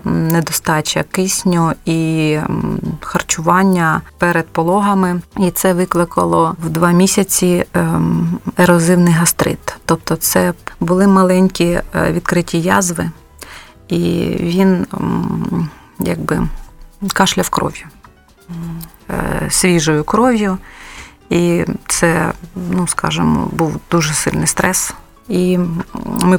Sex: female